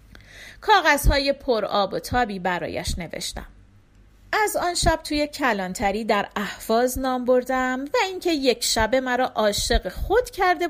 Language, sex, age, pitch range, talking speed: Persian, female, 40-59, 205-335 Hz, 130 wpm